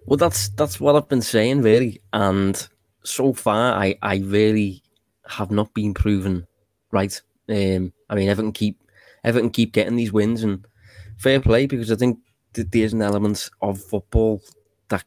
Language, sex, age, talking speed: English, male, 20-39, 165 wpm